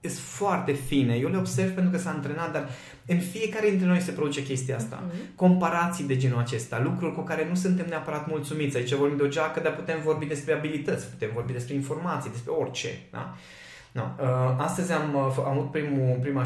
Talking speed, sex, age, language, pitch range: 195 wpm, male, 20-39, Romanian, 125-170 Hz